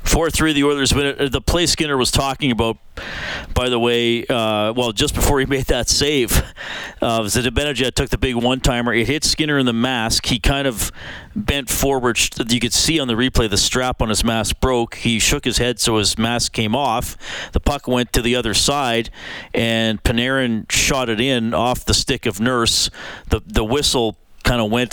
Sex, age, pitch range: male, 40-59, 110-130 Hz